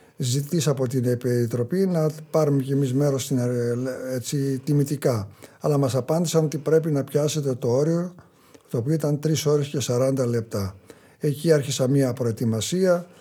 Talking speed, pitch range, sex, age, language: 150 wpm, 125-150 Hz, male, 50-69, Greek